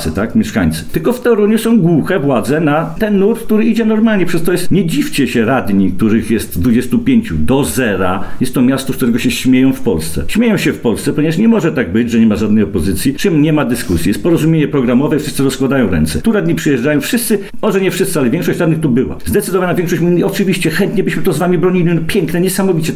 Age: 50-69